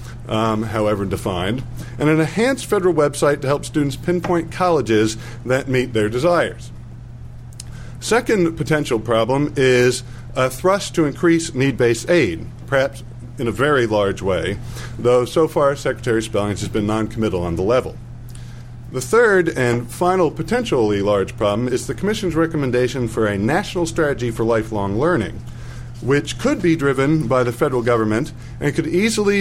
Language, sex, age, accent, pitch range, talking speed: English, male, 50-69, American, 115-150 Hz, 150 wpm